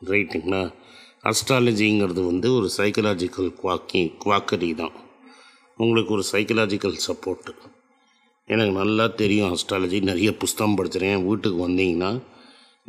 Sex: male